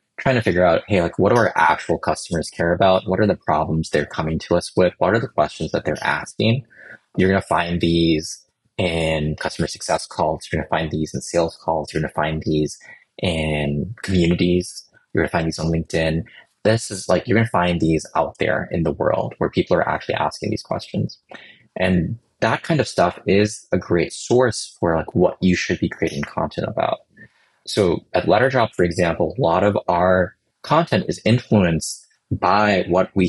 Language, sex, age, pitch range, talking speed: English, male, 20-39, 80-100 Hz, 195 wpm